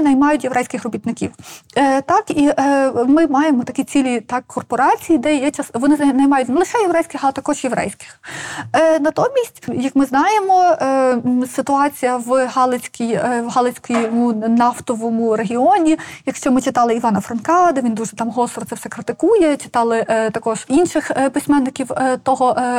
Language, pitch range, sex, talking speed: Ukrainian, 245-295 Hz, female, 160 wpm